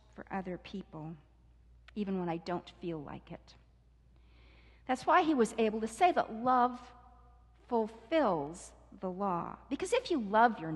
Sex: female